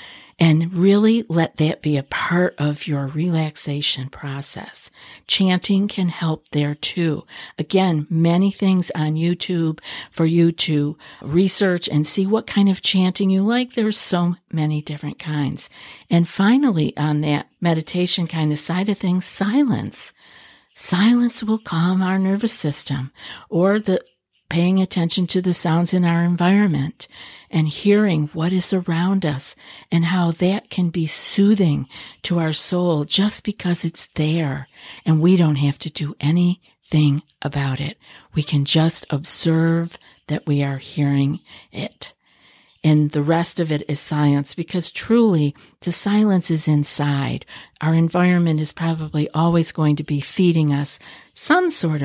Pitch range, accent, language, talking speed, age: 150-185 Hz, American, English, 145 wpm, 50-69